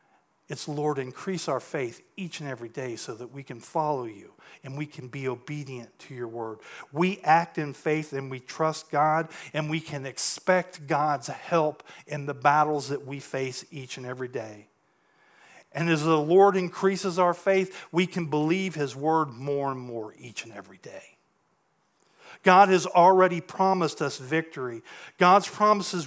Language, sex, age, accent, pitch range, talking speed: English, male, 40-59, American, 140-180 Hz, 170 wpm